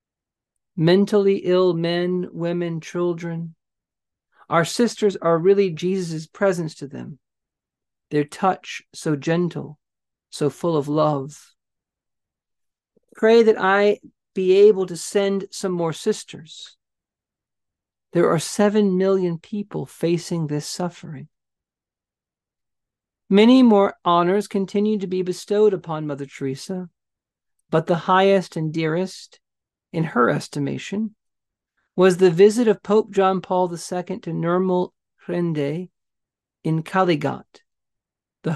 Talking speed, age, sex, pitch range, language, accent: 110 wpm, 40-59, male, 155-190 Hz, English, American